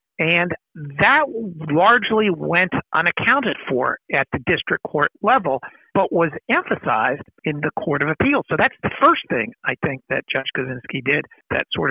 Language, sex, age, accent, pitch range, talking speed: English, male, 60-79, American, 145-175 Hz, 160 wpm